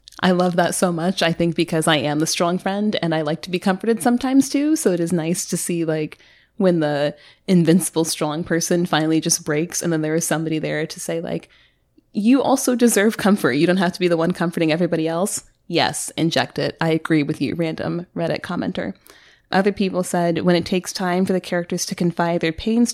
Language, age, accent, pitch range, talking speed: English, 20-39, American, 160-190 Hz, 215 wpm